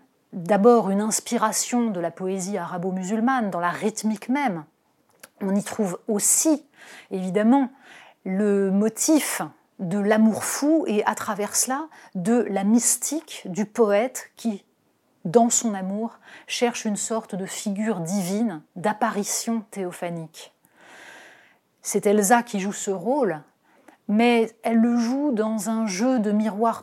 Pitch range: 205-240 Hz